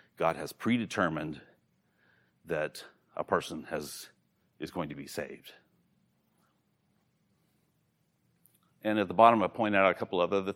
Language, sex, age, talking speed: English, male, 40-59, 130 wpm